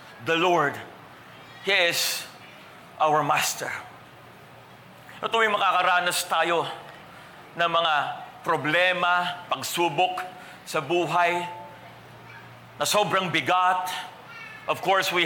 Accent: Filipino